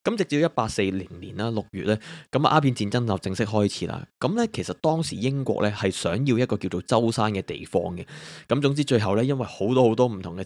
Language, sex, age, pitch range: Chinese, male, 20-39, 95-130 Hz